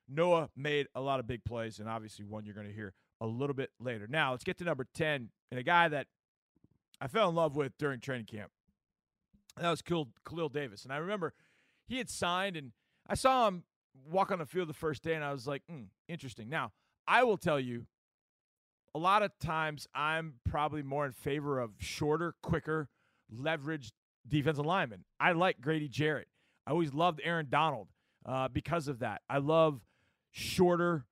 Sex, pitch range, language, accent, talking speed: male, 125-170 Hz, English, American, 190 wpm